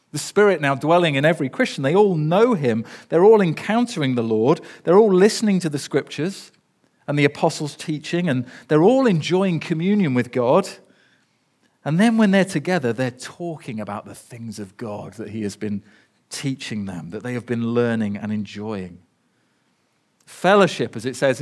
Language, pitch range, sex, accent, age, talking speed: English, 115-180 Hz, male, British, 40-59, 175 wpm